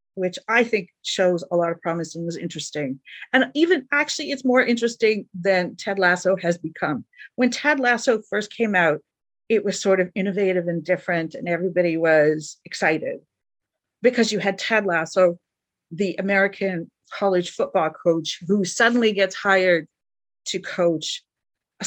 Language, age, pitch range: English, 50-69, 170-230 Hz